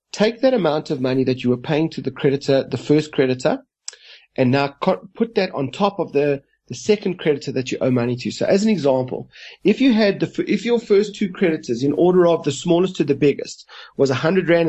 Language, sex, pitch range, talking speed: English, male, 135-180 Hz, 225 wpm